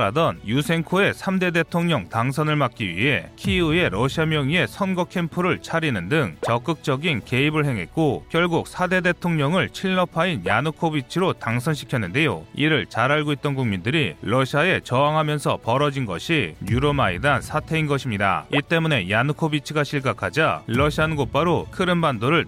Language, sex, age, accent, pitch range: Korean, male, 30-49, native, 125-160 Hz